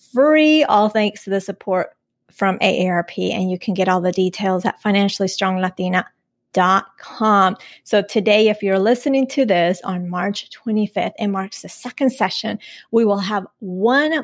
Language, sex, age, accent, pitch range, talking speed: English, female, 30-49, American, 195-245 Hz, 150 wpm